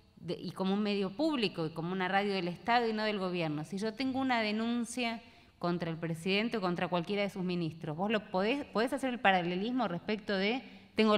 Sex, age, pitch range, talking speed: female, 20-39, 190-250 Hz, 210 wpm